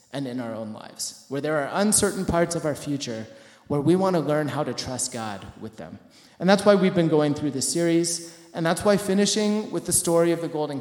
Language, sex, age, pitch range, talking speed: English, male, 30-49, 145-180 Hz, 240 wpm